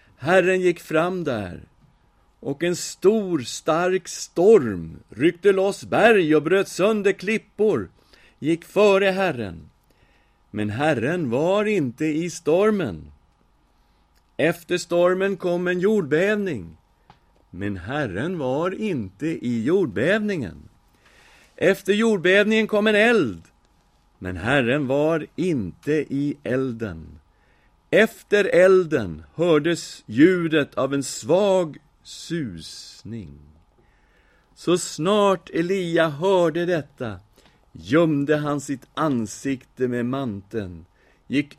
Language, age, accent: English, 50-69, Swedish